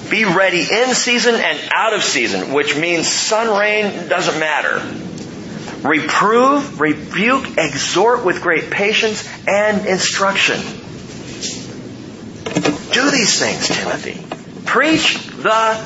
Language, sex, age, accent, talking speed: English, male, 40-59, American, 105 wpm